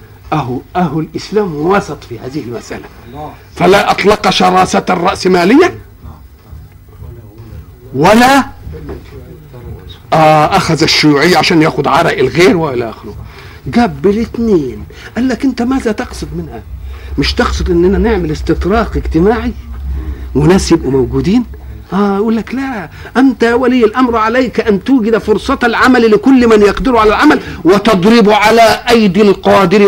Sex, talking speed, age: male, 110 wpm, 50-69